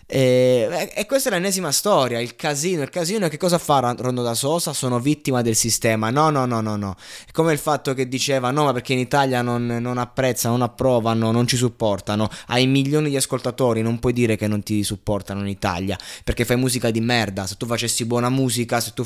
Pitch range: 110-140 Hz